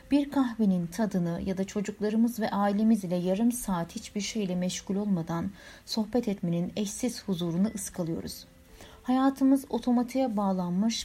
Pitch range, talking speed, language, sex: 175-225 Hz, 125 wpm, Turkish, female